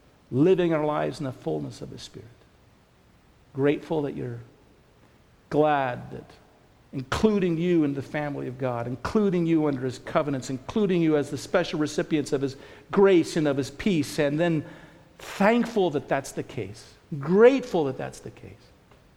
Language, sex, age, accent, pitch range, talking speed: English, male, 50-69, American, 120-155 Hz, 160 wpm